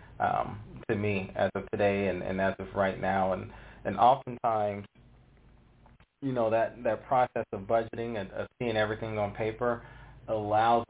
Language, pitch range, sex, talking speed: English, 105-120 Hz, male, 160 wpm